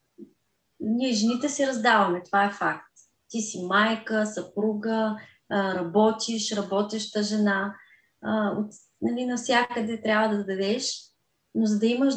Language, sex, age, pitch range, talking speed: Bulgarian, female, 20-39, 205-255 Hz, 120 wpm